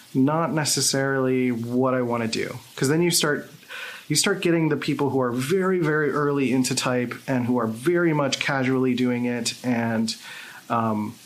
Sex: male